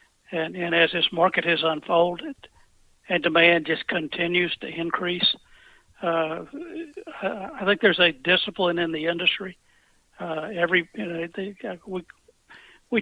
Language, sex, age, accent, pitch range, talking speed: English, male, 60-79, American, 165-185 Hz, 135 wpm